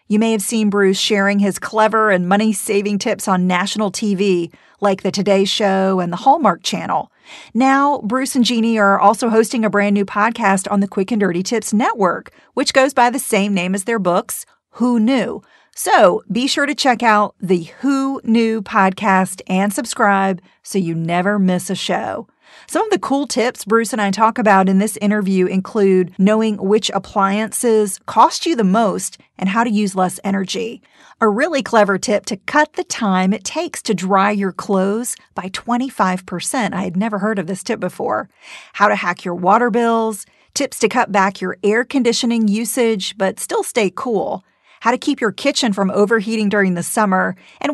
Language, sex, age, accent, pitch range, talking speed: English, female, 40-59, American, 195-235 Hz, 185 wpm